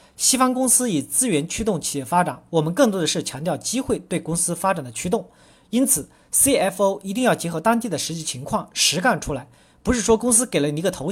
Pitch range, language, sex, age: 155-225 Hz, Chinese, male, 40-59